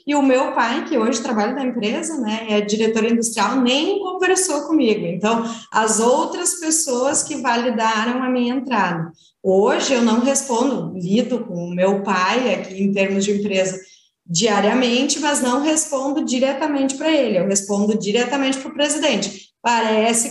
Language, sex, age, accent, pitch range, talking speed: Portuguese, female, 20-39, Brazilian, 220-280 Hz, 155 wpm